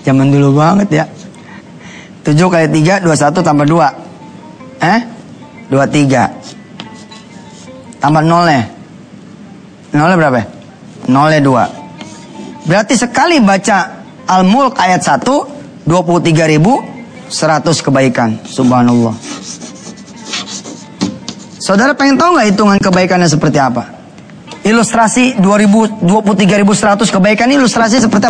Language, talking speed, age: English, 90 wpm, 20-39